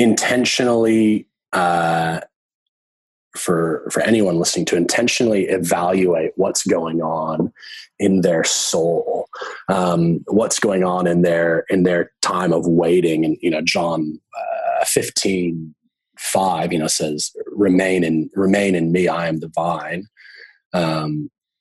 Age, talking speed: 30-49, 130 wpm